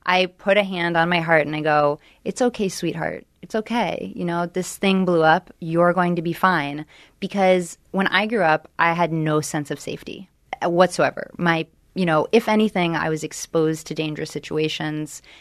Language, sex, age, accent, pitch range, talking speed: English, female, 30-49, American, 155-195 Hz, 190 wpm